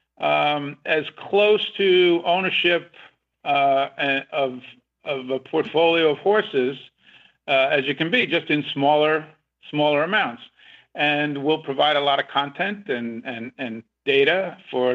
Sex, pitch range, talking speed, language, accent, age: male, 130-160 Hz, 135 wpm, English, American, 50-69